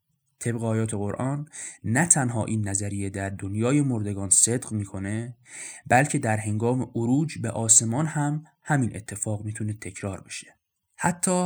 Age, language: 20-39, Persian